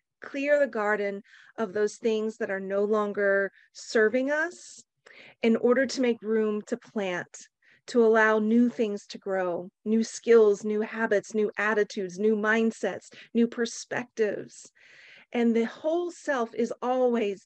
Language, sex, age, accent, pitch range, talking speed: English, female, 40-59, American, 210-245 Hz, 140 wpm